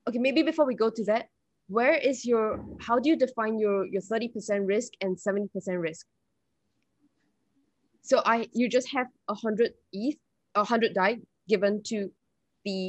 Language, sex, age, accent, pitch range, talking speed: English, female, 10-29, Malaysian, 200-235 Hz, 170 wpm